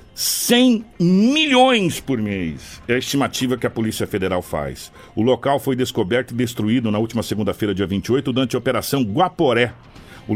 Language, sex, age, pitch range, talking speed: Portuguese, male, 60-79, 110-145 Hz, 160 wpm